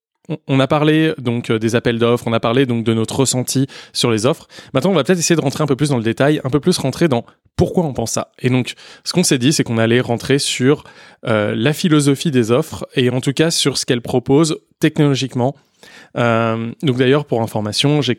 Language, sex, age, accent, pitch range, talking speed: French, male, 20-39, French, 115-145 Hz, 230 wpm